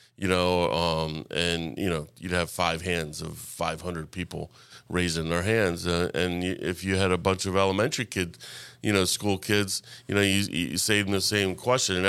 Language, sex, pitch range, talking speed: English, male, 90-100 Hz, 205 wpm